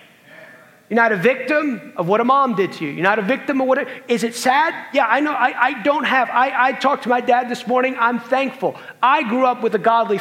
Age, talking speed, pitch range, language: 30-49, 260 wpm, 215-270 Hz, English